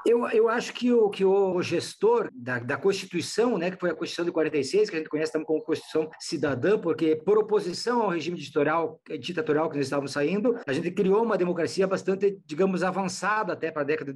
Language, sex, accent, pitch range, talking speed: English, male, Brazilian, 155-200 Hz, 210 wpm